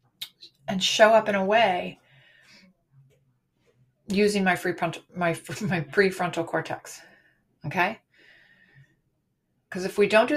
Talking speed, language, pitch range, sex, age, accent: 115 wpm, English, 170-200 Hz, female, 30-49, American